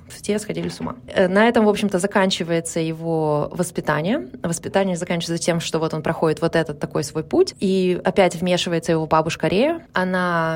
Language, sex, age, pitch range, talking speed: Russian, female, 20-39, 160-200 Hz, 170 wpm